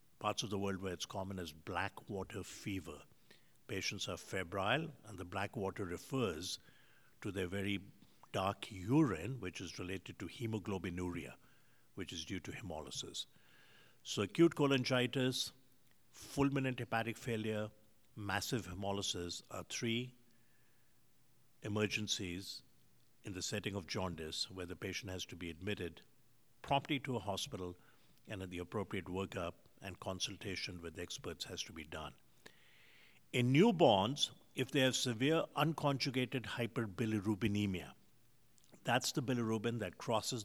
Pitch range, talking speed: 95-125 Hz, 130 wpm